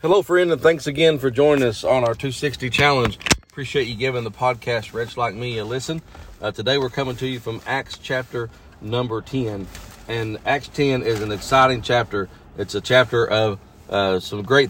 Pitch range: 100-130 Hz